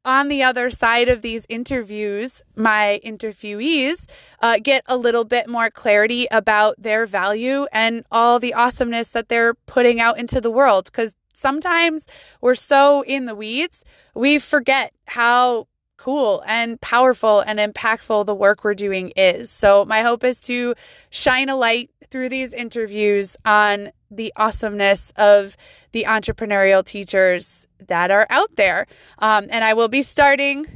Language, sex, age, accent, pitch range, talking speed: English, female, 20-39, American, 215-270 Hz, 150 wpm